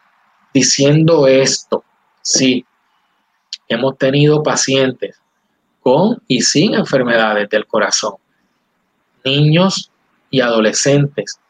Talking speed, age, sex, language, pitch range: 80 wpm, 20-39, male, Spanish, 125-155 Hz